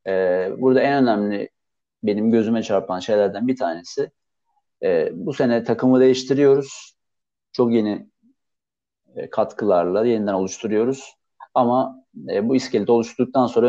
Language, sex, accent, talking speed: Turkish, male, native, 100 wpm